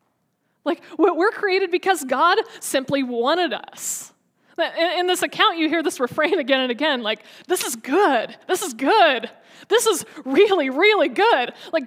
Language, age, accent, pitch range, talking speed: English, 20-39, American, 260-345 Hz, 155 wpm